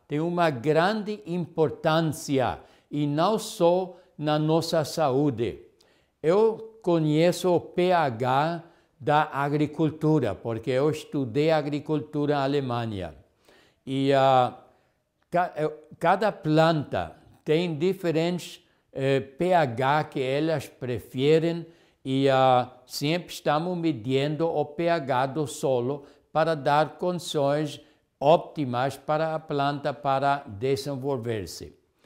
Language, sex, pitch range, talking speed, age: Portuguese, male, 135-170 Hz, 90 wpm, 60-79